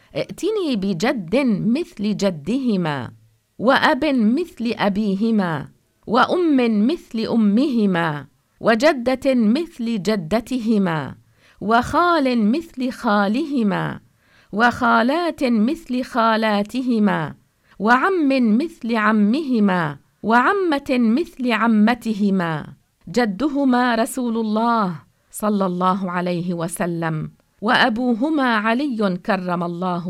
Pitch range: 195-250 Hz